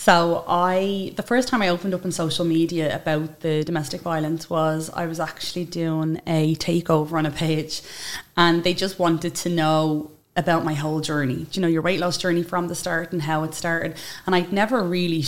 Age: 20-39